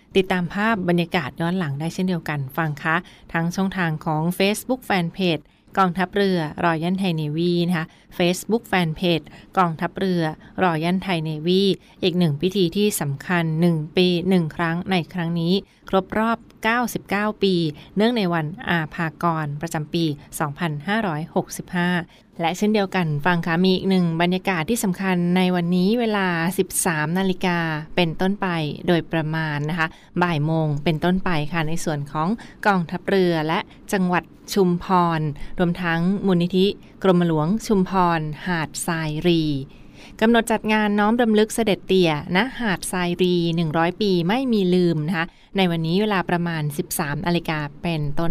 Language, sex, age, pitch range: Thai, female, 20-39, 165-190 Hz